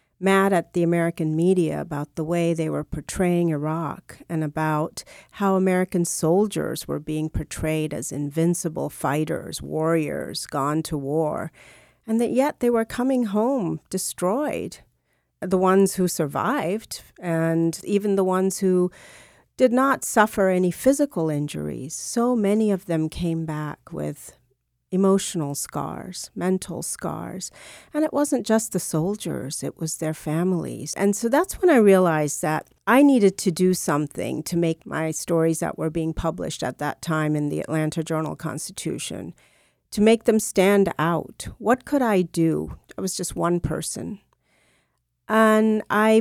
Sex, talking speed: female, 150 wpm